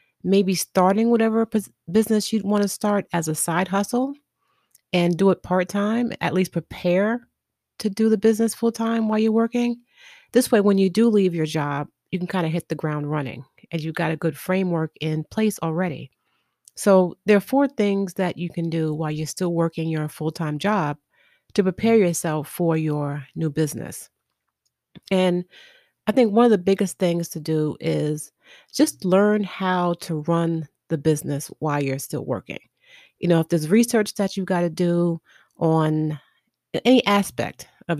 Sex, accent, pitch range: female, American, 160-210 Hz